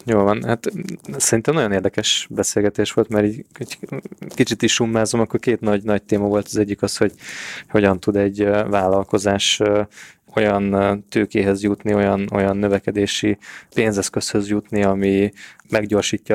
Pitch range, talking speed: 100-110 Hz, 135 wpm